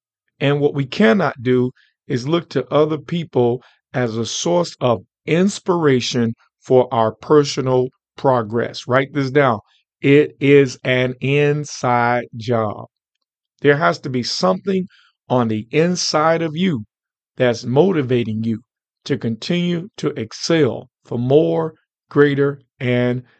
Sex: male